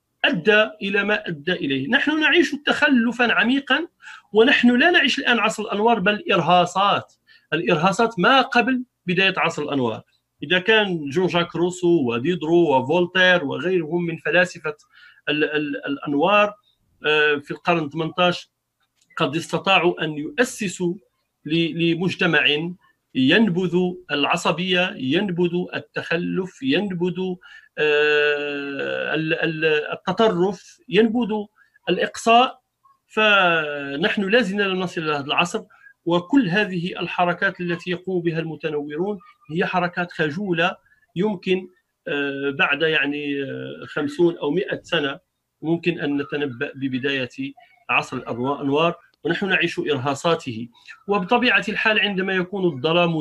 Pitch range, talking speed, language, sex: 160-210 Hz, 95 wpm, Arabic, male